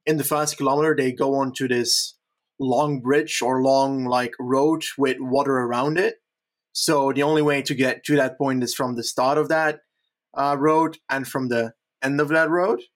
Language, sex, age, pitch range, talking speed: English, male, 20-39, 130-150 Hz, 200 wpm